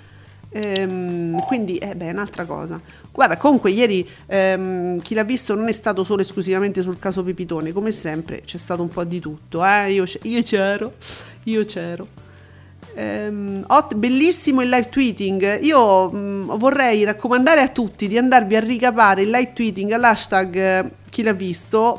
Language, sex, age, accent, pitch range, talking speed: Italian, female, 40-59, native, 180-240 Hz, 160 wpm